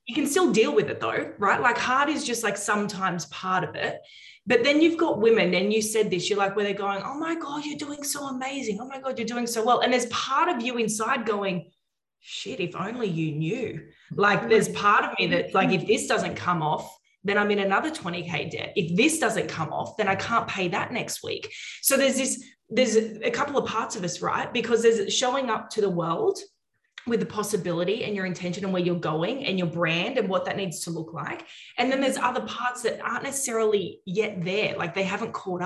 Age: 20-39